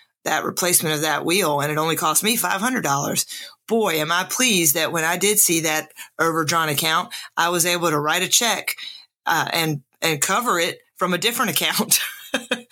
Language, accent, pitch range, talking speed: English, American, 170-220 Hz, 185 wpm